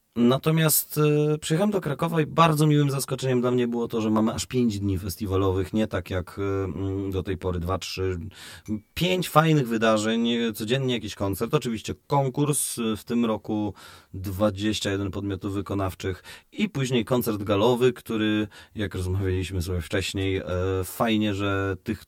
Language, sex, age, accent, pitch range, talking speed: Polish, male, 30-49, native, 100-125 Hz, 140 wpm